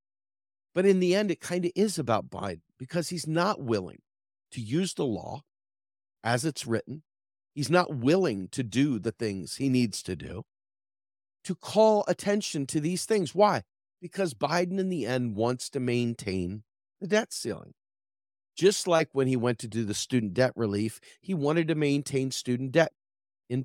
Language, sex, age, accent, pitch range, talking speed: English, male, 40-59, American, 100-160 Hz, 175 wpm